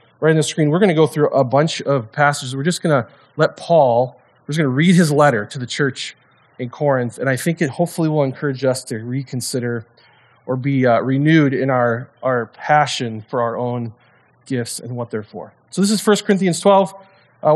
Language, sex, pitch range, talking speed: English, male, 130-180 Hz, 220 wpm